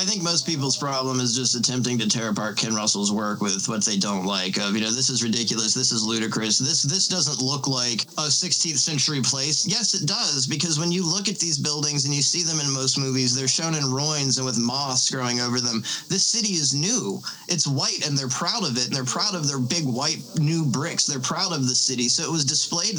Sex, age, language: male, 20-39, English